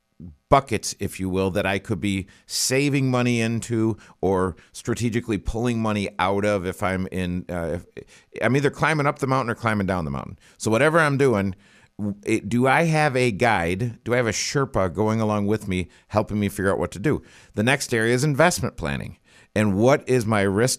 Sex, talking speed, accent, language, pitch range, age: male, 195 wpm, American, English, 100-125 Hz, 50-69